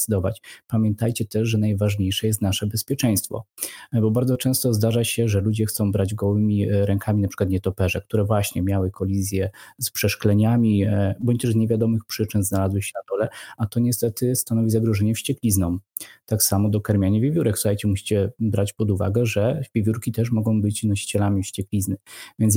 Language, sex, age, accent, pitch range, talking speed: Polish, male, 20-39, native, 100-115 Hz, 160 wpm